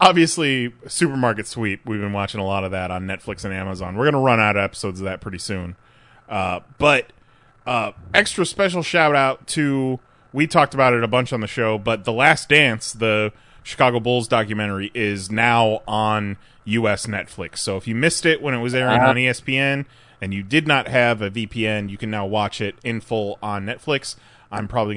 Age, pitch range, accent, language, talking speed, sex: 30-49, 110-145 Hz, American, English, 200 wpm, male